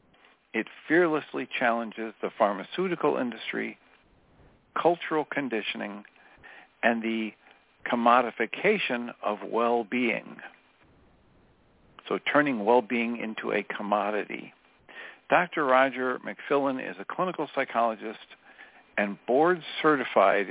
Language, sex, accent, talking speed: English, male, American, 80 wpm